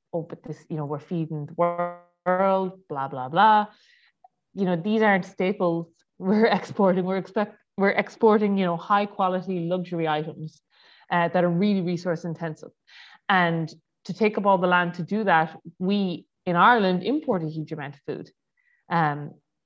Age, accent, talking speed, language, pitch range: 30-49, Irish, 170 wpm, English, 170-205 Hz